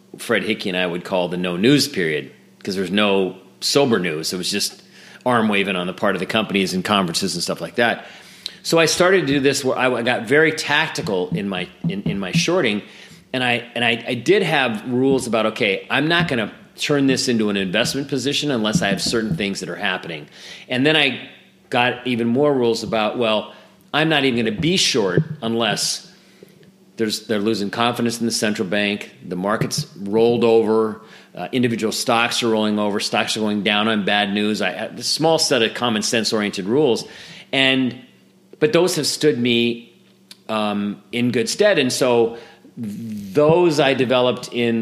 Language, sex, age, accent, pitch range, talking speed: English, male, 40-59, American, 105-145 Hz, 195 wpm